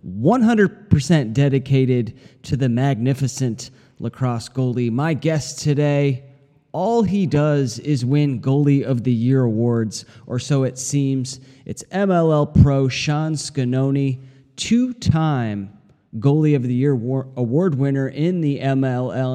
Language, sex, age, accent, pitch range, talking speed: English, male, 30-49, American, 125-150 Hz, 120 wpm